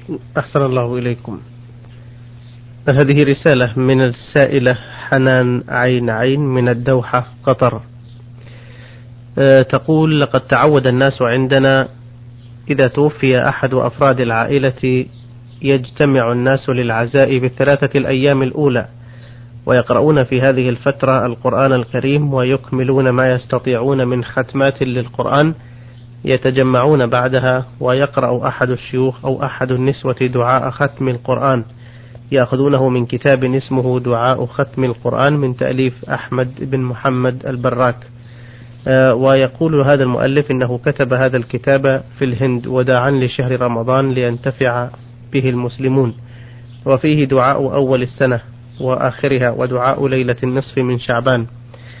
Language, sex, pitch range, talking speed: Arabic, male, 120-135 Hz, 105 wpm